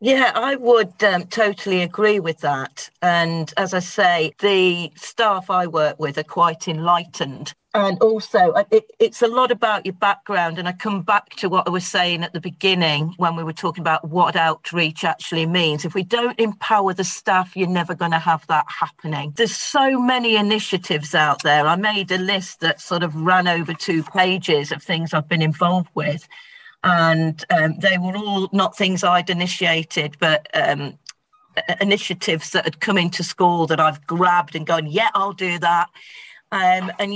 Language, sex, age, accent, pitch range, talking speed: English, female, 40-59, British, 170-205 Hz, 180 wpm